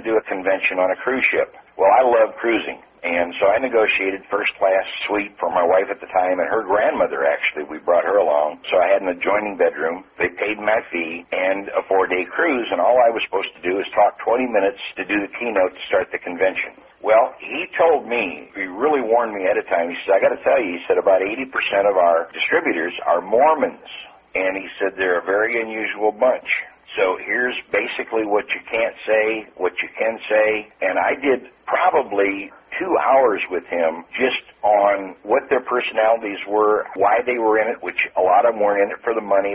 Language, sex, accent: English, male, American